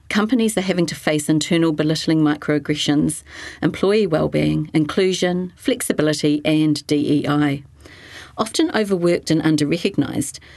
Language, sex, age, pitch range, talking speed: English, female, 40-59, 145-180 Hz, 100 wpm